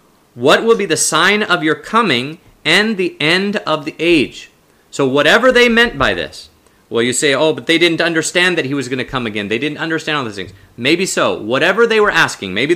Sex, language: male, English